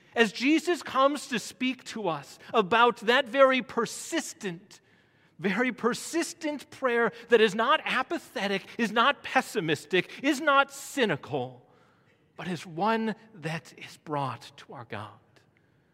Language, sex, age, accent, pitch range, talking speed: English, male, 40-59, American, 160-240 Hz, 125 wpm